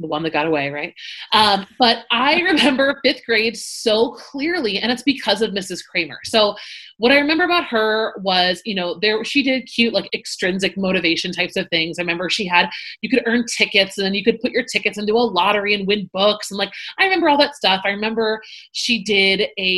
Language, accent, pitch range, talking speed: English, American, 180-230 Hz, 220 wpm